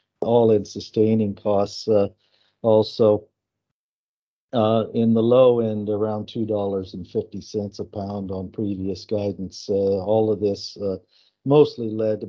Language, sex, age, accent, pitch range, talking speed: English, male, 50-69, American, 95-115 Hz, 120 wpm